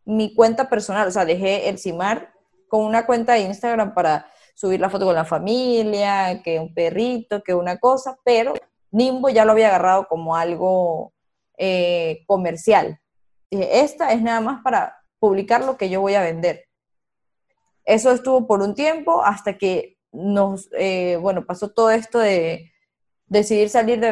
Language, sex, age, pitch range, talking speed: Spanish, female, 20-39, 190-235 Hz, 165 wpm